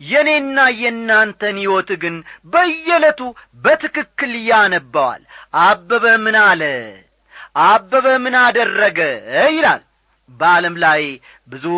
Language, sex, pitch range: Amharic, male, 185-265 Hz